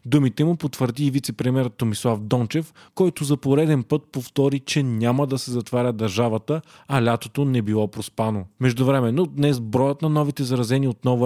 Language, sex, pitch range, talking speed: Bulgarian, male, 120-140 Hz, 170 wpm